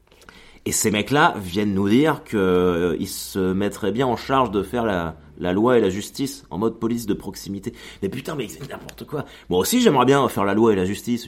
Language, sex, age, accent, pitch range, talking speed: French, male, 30-49, French, 90-125 Hz, 225 wpm